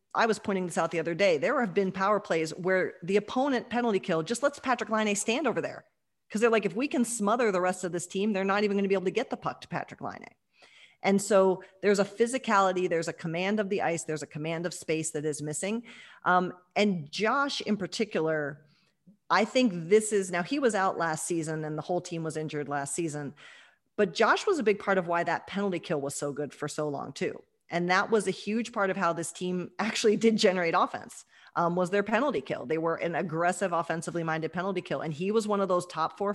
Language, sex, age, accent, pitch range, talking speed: English, female, 40-59, American, 165-210 Hz, 240 wpm